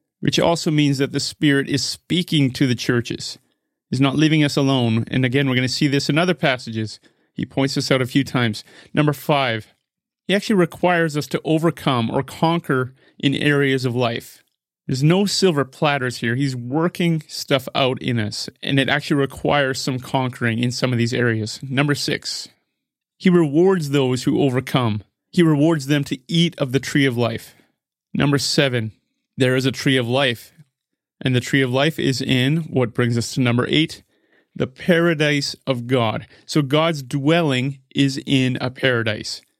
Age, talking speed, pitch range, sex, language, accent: 30-49, 180 wpm, 125-150 Hz, male, English, American